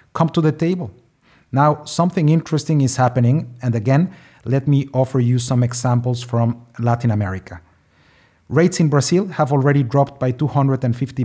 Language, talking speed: English, 150 wpm